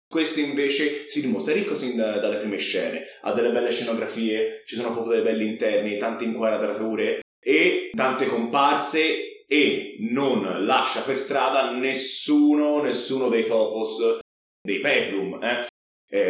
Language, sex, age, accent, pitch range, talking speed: Italian, male, 30-49, native, 115-170 Hz, 135 wpm